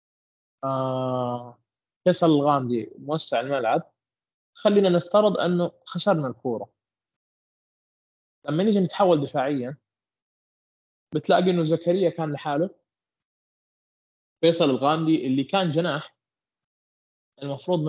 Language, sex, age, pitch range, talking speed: Arabic, male, 20-39, 125-160 Hz, 85 wpm